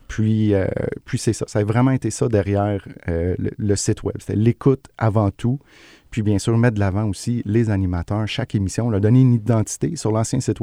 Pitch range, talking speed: 95-115 Hz, 220 wpm